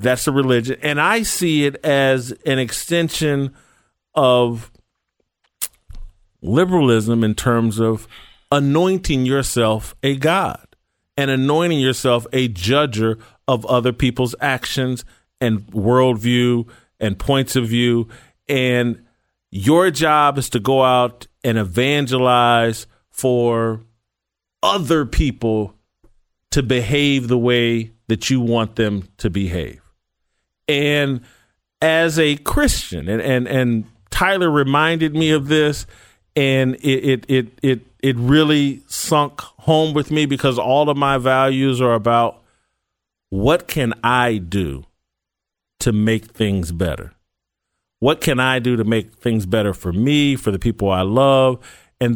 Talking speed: 125 wpm